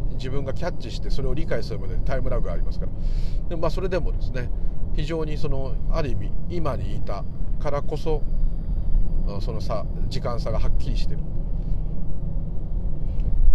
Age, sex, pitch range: 40-59, male, 90-120 Hz